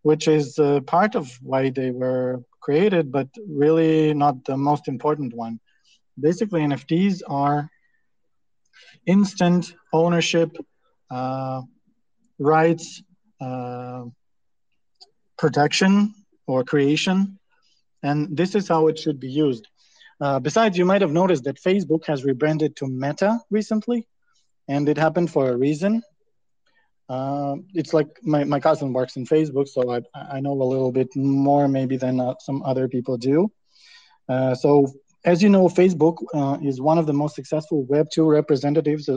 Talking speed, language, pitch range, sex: 140 wpm, English, 135-175 Hz, male